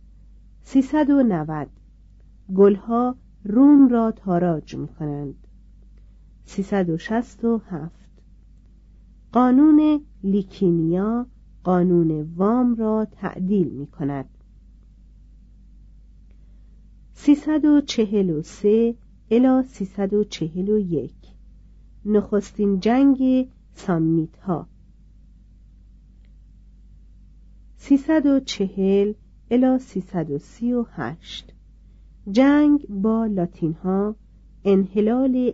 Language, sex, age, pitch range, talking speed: Persian, female, 50-69, 150-235 Hz, 65 wpm